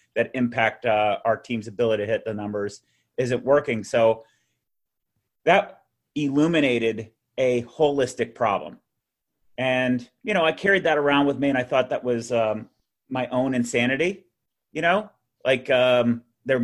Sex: male